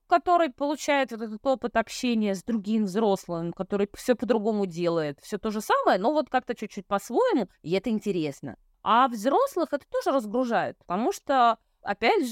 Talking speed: 155 wpm